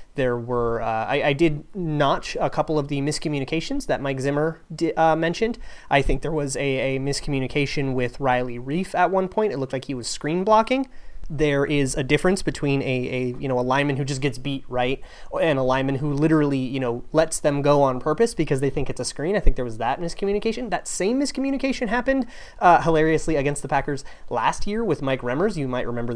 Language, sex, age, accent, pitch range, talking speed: English, male, 30-49, American, 130-175 Hz, 220 wpm